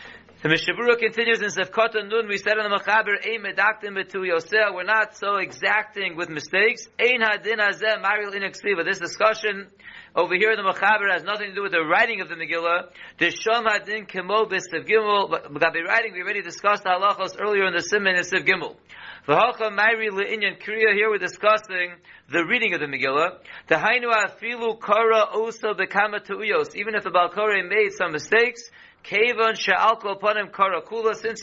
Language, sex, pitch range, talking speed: English, male, 185-220 Hz, 135 wpm